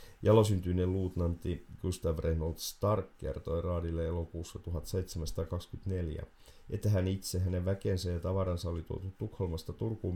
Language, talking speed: Finnish, 120 wpm